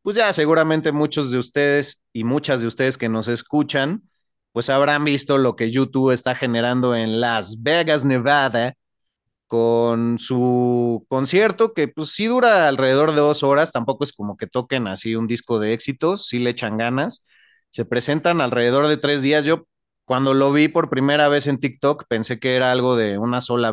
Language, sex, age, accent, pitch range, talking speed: Spanish, male, 30-49, Mexican, 120-150 Hz, 180 wpm